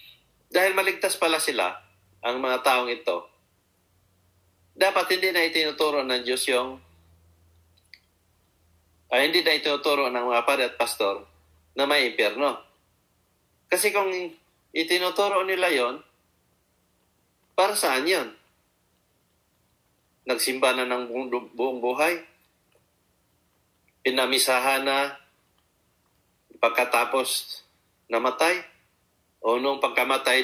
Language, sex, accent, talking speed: Filipino, male, native, 95 wpm